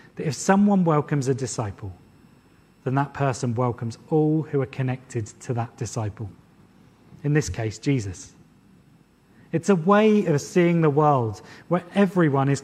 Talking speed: 145 wpm